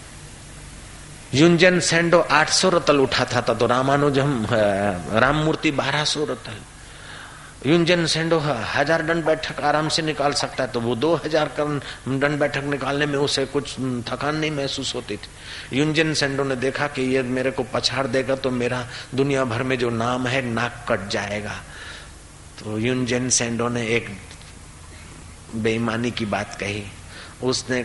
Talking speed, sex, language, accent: 145 wpm, male, Hindi, native